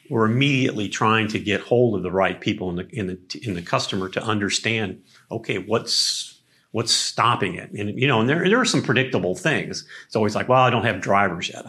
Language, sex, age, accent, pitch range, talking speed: English, male, 40-59, American, 100-130 Hz, 225 wpm